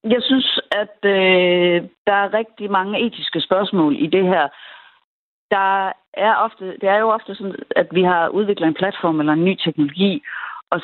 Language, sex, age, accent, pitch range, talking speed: Danish, female, 40-59, native, 150-200 Hz, 175 wpm